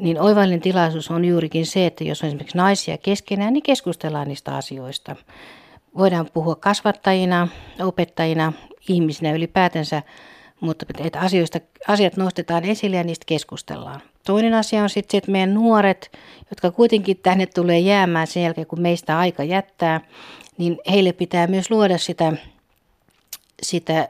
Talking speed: 140 wpm